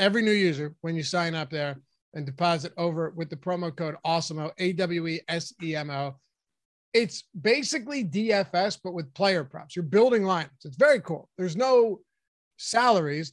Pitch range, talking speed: 165-210 Hz, 150 wpm